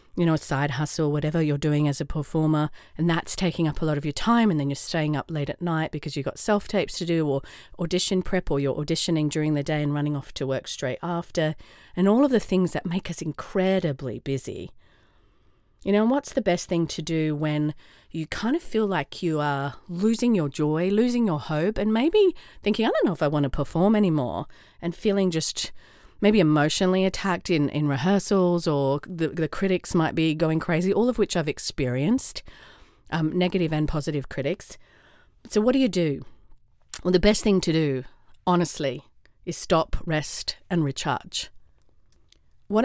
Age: 40-59